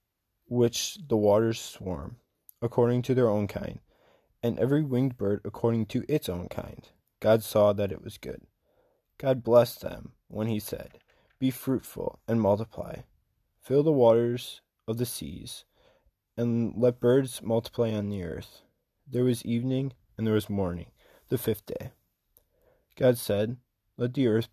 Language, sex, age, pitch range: English, male, 20-39, 105-120 Hz